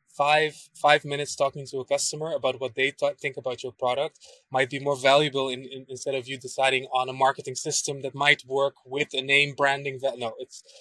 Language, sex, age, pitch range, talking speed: English, male, 20-39, 125-145 Hz, 210 wpm